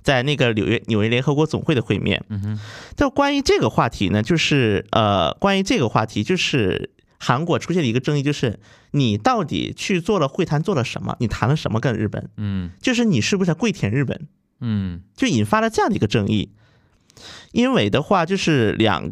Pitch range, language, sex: 110-185 Hz, Chinese, male